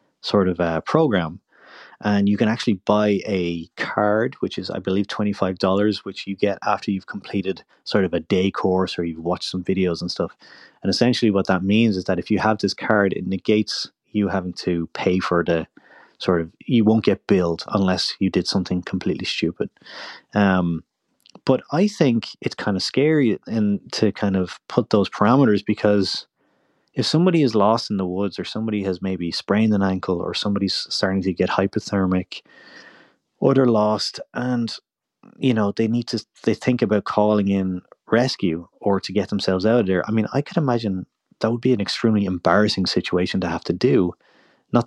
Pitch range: 95-110 Hz